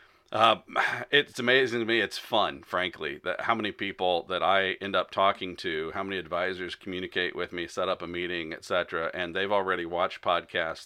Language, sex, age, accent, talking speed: English, male, 40-59, American, 190 wpm